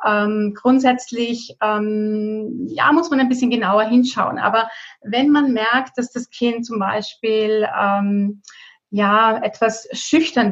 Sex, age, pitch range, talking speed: female, 30-49, 210-245 Hz, 130 wpm